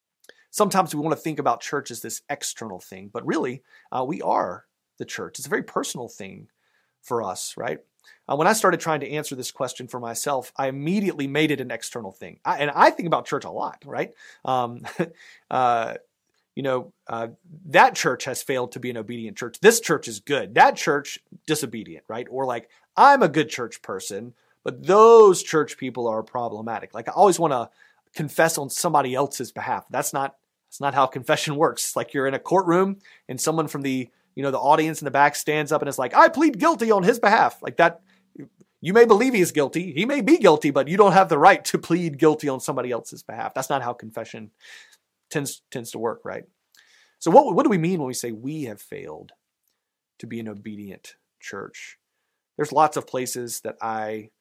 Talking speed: 205 wpm